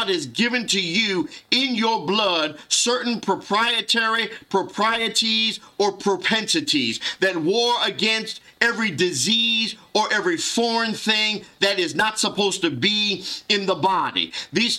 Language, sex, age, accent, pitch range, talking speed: English, male, 50-69, American, 200-240 Hz, 125 wpm